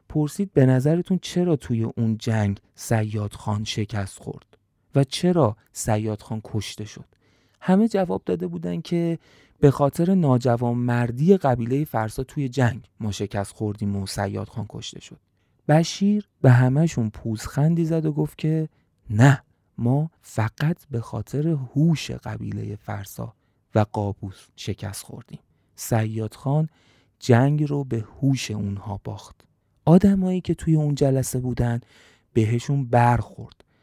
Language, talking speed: Persian, 135 wpm